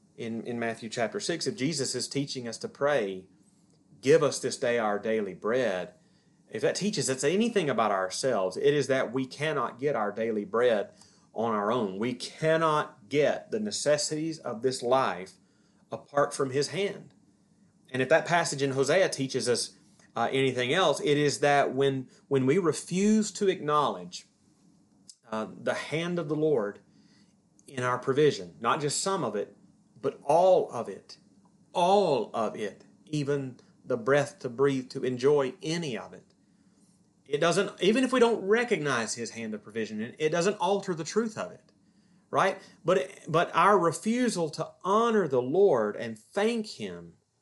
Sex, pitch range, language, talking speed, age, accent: male, 125-195 Hz, English, 165 wpm, 30-49, American